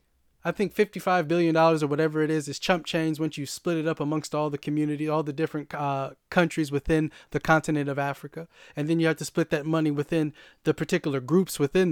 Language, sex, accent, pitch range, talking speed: English, male, American, 150-185 Hz, 215 wpm